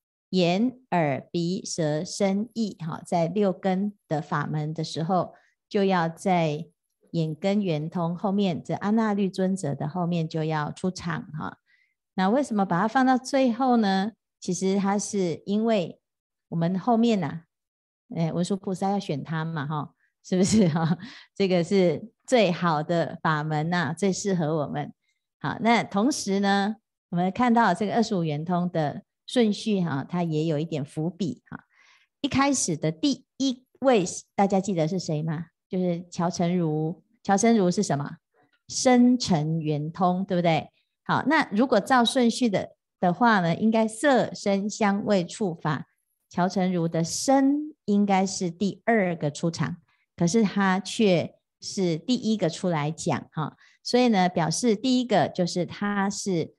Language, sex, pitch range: Chinese, female, 165-215 Hz